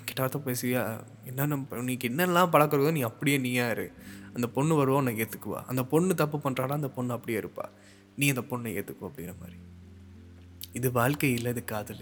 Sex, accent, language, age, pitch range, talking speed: male, native, Tamil, 20-39, 115-135 Hz, 170 wpm